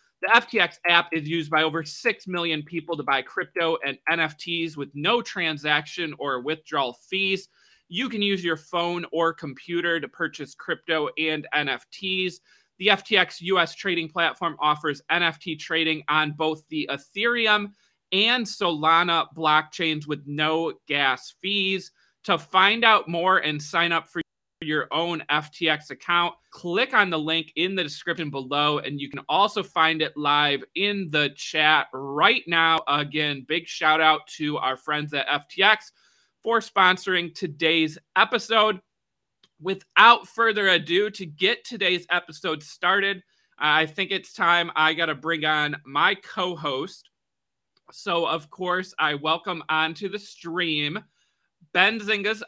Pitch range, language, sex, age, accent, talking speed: 155-185 Hz, English, male, 30-49, American, 145 wpm